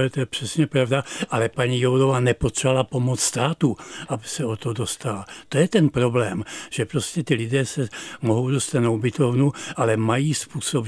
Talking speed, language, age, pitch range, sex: 170 wpm, Czech, 60-79, 135-165 Hz, male